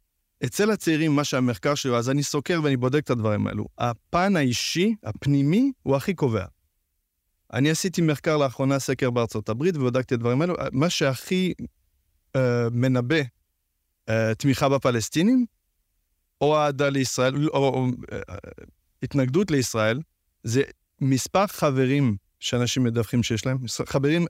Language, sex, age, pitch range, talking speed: Hebrew, male, 30-49, 110-150 Hz, 135 wpm